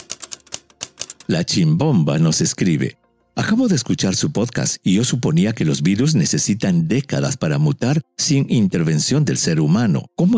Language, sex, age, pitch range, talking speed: English, male, 50-69, 115-170 Hz, 145 wpm